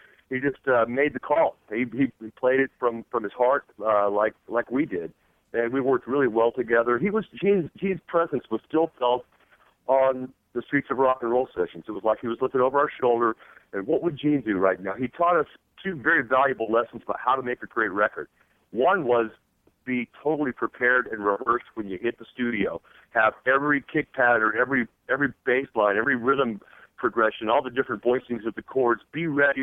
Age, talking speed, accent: 50-69, 210 wpm, American